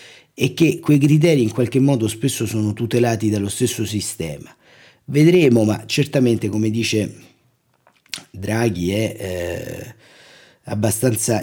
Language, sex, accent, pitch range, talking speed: Italian, male, native, 95-120 Hz, 115 wpm